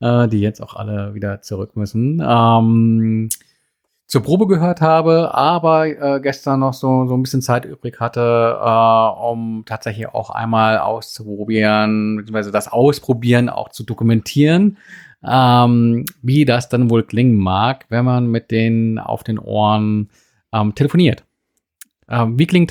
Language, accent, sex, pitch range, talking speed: German, German, male, 110-130 Hz, 145 wpm